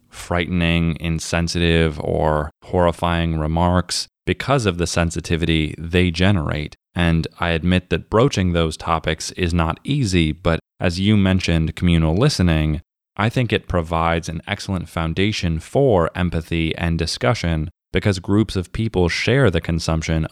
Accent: American